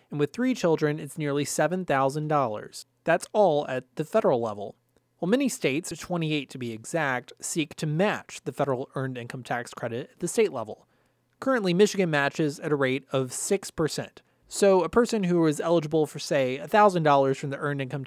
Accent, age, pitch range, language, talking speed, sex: American, 30-49, 135-175 Hz, English, 195 wpm, male